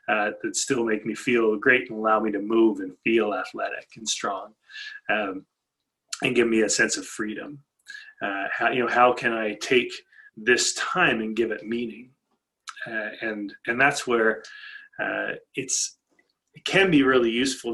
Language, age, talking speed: English, 30-49, 175 wpm